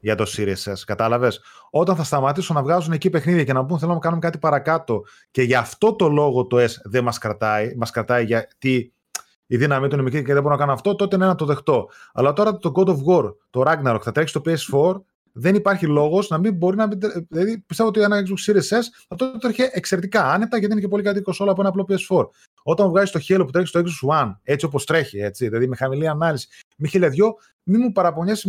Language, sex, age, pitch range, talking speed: Greek, male, 20-39, 130-200 Hz, 230 wpm